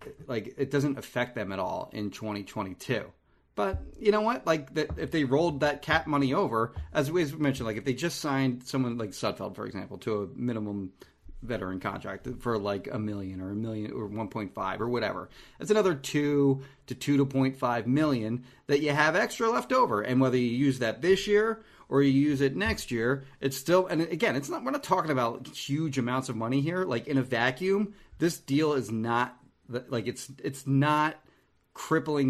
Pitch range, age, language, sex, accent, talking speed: 110-145 Hz, 30-49, English, male, American, 200 wpm